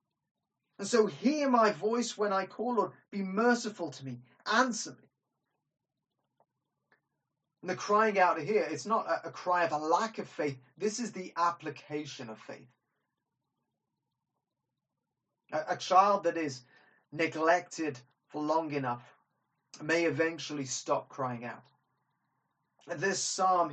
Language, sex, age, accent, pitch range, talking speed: English, male, 30-49, British, 140-190 Hz, 125 wpm